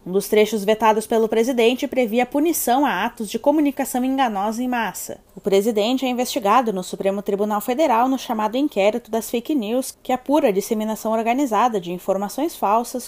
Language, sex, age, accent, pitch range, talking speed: Portuguese, female, 20-39, Brazilian, 205-250 Hz, 170 wpm